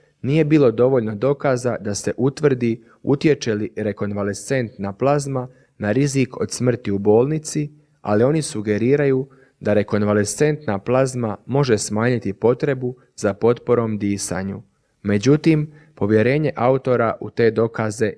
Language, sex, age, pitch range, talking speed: Croatian, male, 30-49, 105-135 Hz, 115 wpm